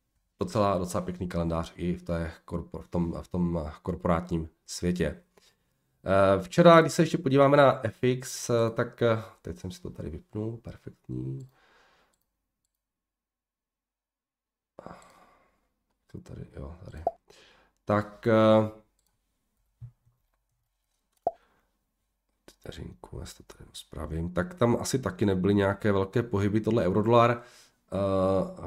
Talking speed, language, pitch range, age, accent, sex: 100 wpm, Czech, 90-110 Hz, 40-59, native, male